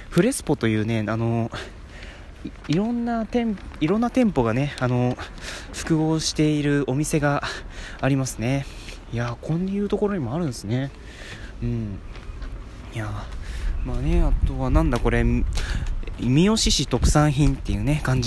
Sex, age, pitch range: male, 20-39, 100-160 Hz